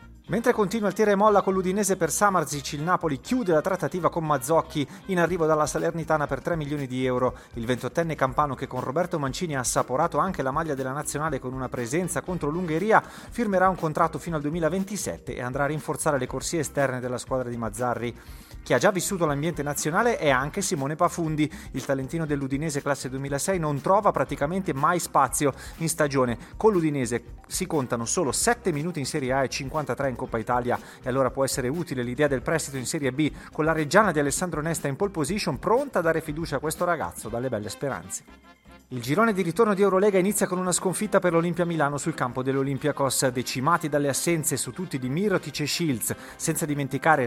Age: 30-49